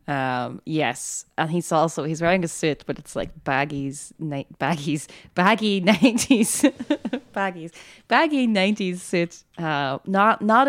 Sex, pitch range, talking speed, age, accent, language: female, 155-240 Hz, 130 wpm, 20-39, Irish, English